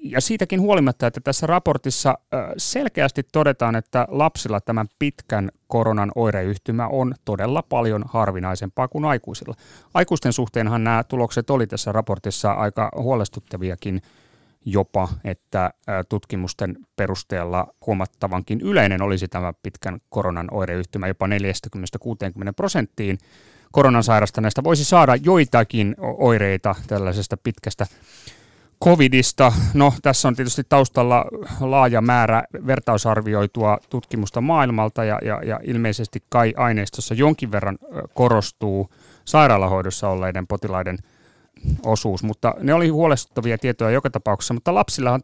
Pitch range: 100-135 Hz